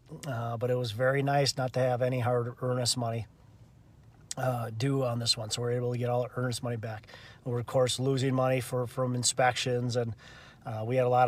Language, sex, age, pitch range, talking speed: English, male, 30-49, 120-135 Hz, 230 wpm